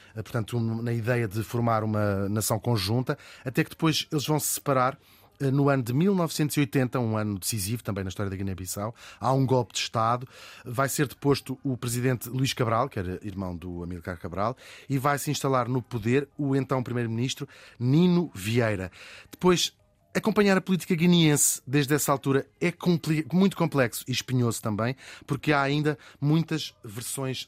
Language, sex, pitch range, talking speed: Portuguese, male, 110-145 Hz, 165 wpm